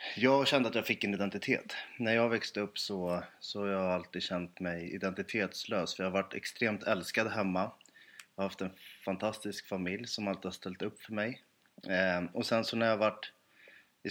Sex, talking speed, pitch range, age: male, 195 wpm, 95-120 Hz, 30-49